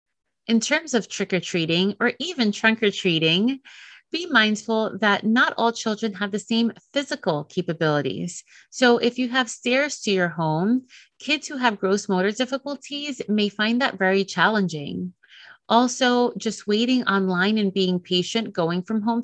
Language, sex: English, female